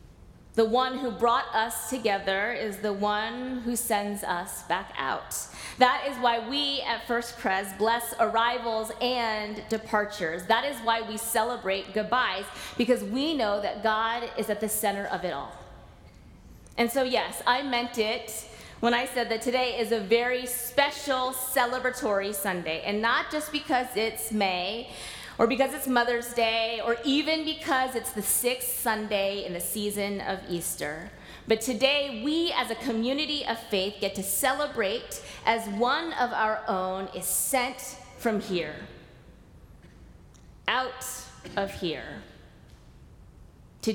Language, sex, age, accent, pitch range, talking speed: English, female, 30-49, American, 195-245 Hz, 145 wpm